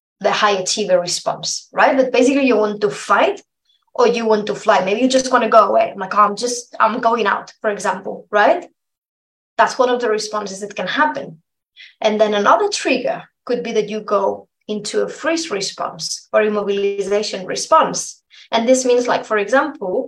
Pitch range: 205-255 Hz